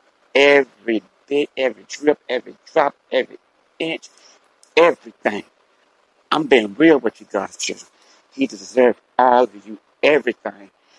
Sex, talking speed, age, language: male, 120 wpm, 60-79, English